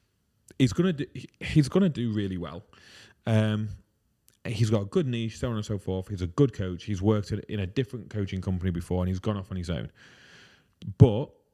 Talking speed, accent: 190 wpm, British